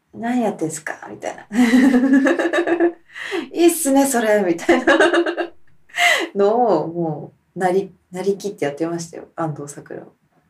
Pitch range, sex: 150-190 Hz, female